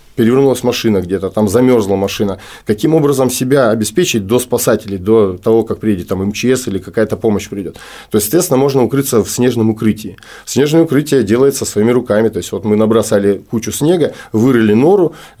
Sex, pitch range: male, 105-125 Hz